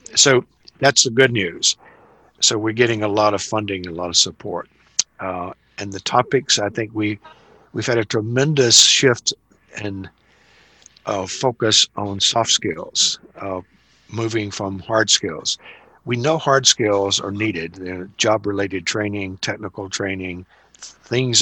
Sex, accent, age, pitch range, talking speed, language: male, American, 60-79, 95-115 Hz, 145 wpm, English